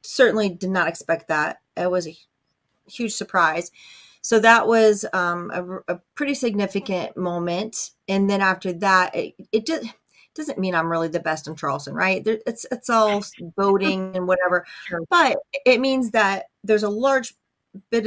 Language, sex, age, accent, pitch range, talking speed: English, female, 40-59, American, 170-205 Hz, 165 wpm